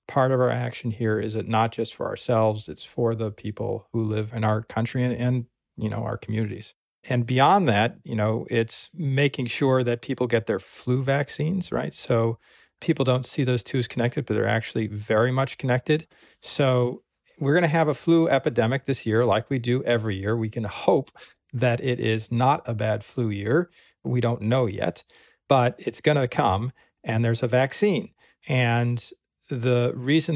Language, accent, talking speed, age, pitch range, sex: English, American, 190 wpm, 40-59, 115-145 Hz, male